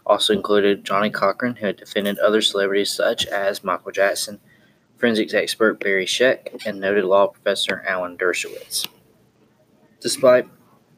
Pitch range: 100-115 Hz